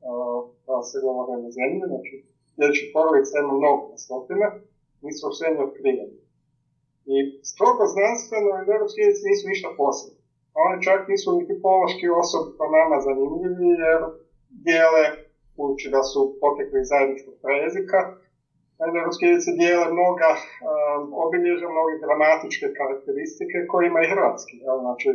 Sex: male